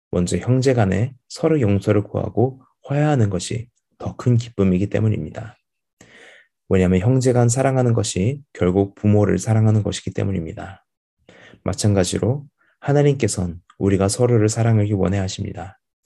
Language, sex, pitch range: Korean, male, 95-115 Hz